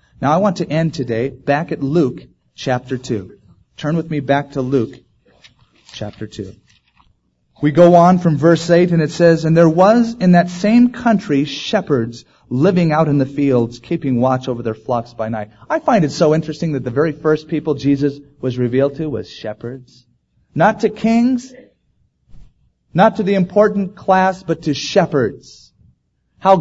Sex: male